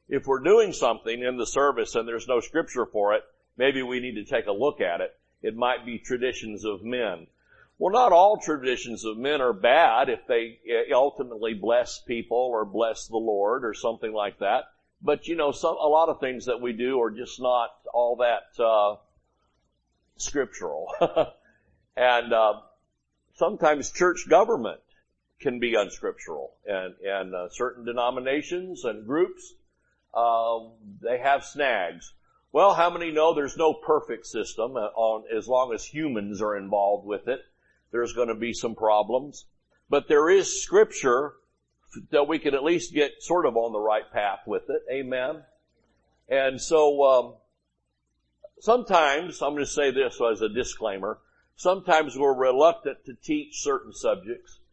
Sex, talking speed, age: male, 160 wpm, 60-79